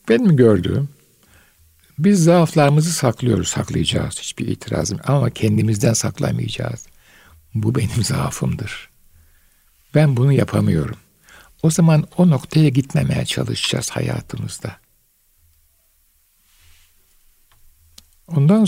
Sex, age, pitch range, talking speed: male, 60-79, 100-165 Hz, 85 wpm